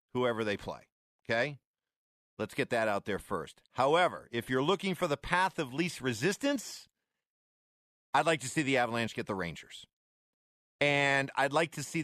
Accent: American